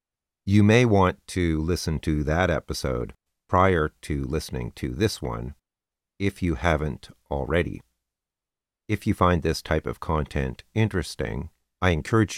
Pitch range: 75-95 Hz